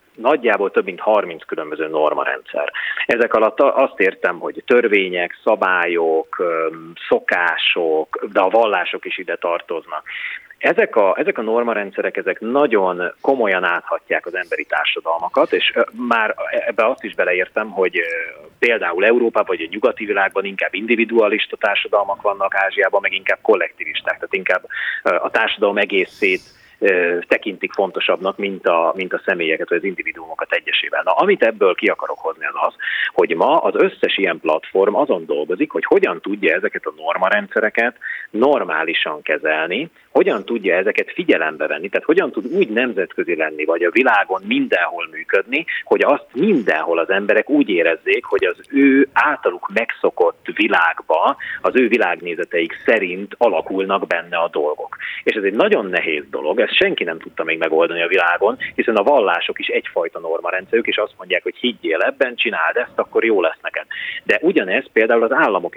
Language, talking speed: Hungarian, 150 wpm